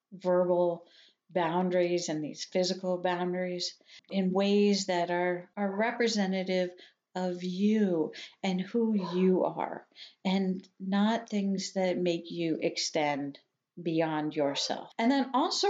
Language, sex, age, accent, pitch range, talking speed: English, female, 50-69, American, 180-235 Hz, 115 wpm